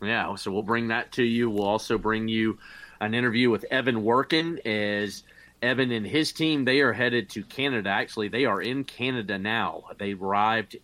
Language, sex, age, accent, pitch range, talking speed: English, male, 30-49, American, 100-120 Hz, 190 wpm